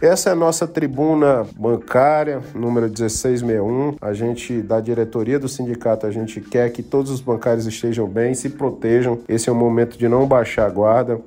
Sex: male